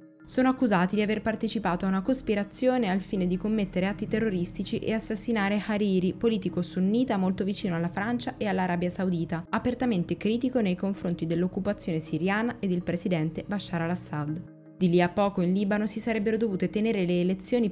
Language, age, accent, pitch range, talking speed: Italian, 20-39, native, 170-210 Hz, 165 wpm